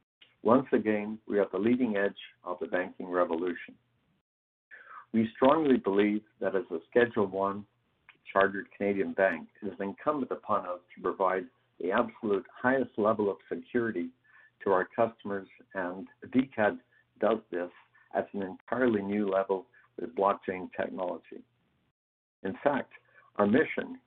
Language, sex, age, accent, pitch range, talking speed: English, male, 60-79, American, 95-125 Hz, 135 wpm